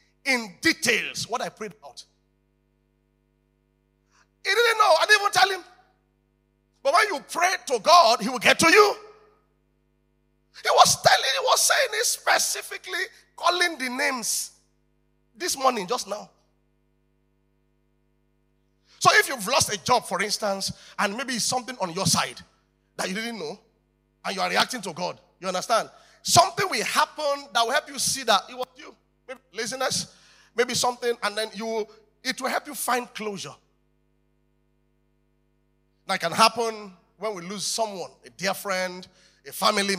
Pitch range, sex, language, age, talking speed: 160-250 Hz, male, English, 40-59, 155 wpm